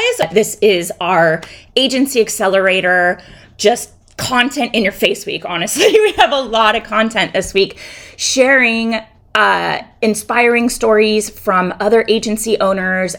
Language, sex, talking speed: English, female, 125 wpm